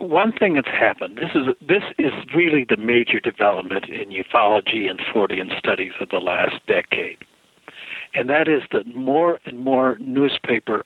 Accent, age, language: American, 60-79, English